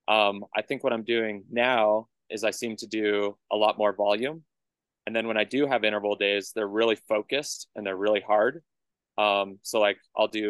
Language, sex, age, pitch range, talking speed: English, male, 20-39, 100-115 Hz, 205 wpm